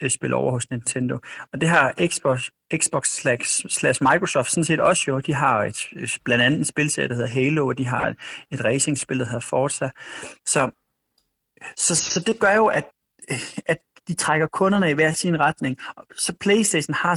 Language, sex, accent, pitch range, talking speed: Danish, male, native, 125-155 Hz, 180 wpm